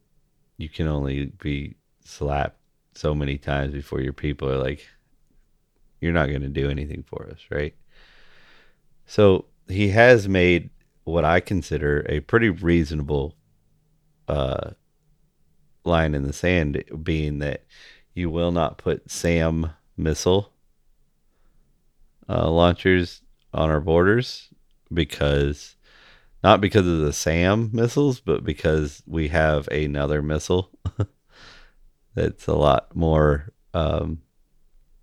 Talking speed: 115 wpm